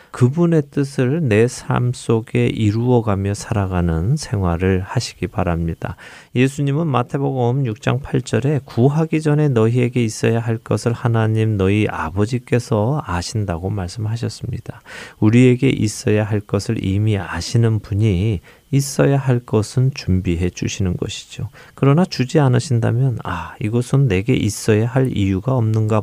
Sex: male